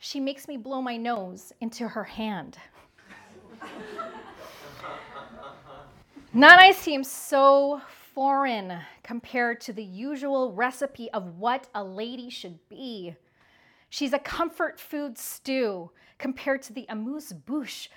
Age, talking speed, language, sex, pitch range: 30-49, 110 wpm, English, female, 210-270 Hz